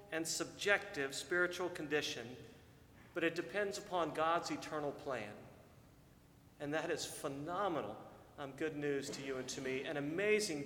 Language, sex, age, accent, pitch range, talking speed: English, male, 40-59, American, 155-205 Hz, 140 wpm